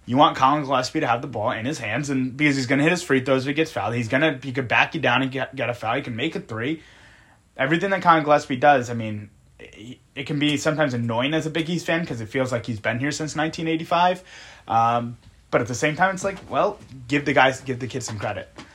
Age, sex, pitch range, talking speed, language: 20-39, male, 115-150 Hz, 270 wpm, English